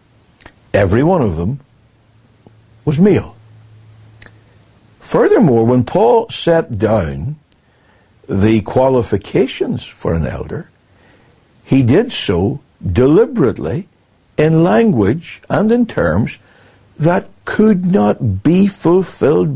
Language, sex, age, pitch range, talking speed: English, male, 60-79, 105-160 Hz, 90 wpm